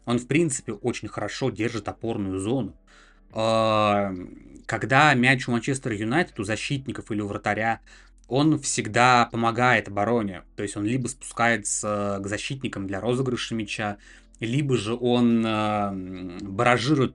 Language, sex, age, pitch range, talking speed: Russian, male, 20-39, 105-125 Hz, 125 wpm